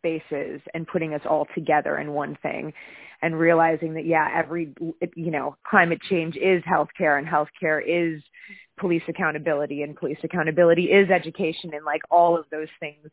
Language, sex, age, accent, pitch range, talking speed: English, female, 20-39, American, 155-190 Hz, 165 wpm